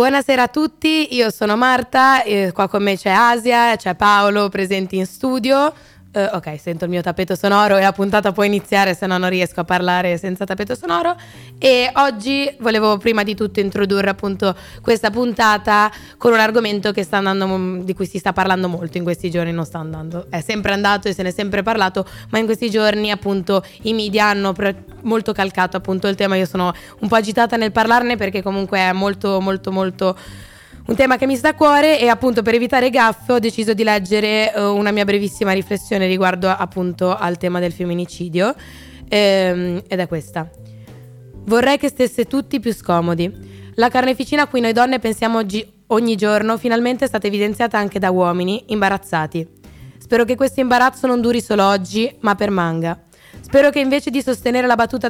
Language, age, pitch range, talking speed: Italian, 20-39, 185-235 Hz, 190 wpm